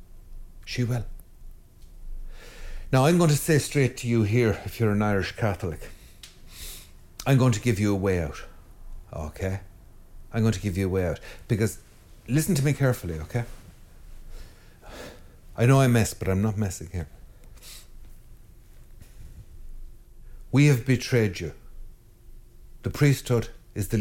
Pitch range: 95-120 Hz